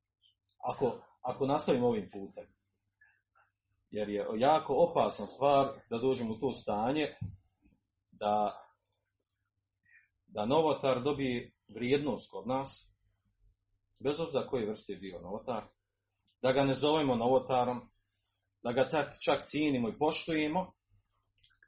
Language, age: Croatian, 40-59